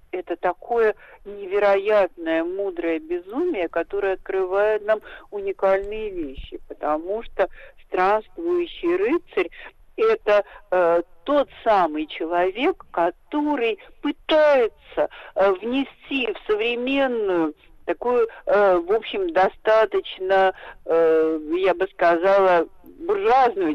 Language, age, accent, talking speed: Russian, 50-69, native, 85 wpm